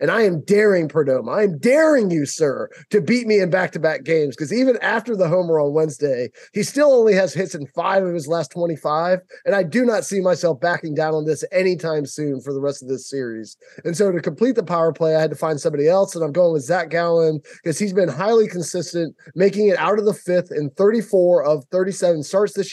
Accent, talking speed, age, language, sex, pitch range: American, 230 wpm, 20-39, English, male, 155-190 Hz